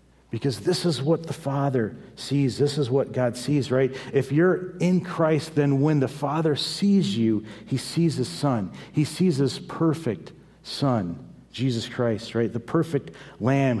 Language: English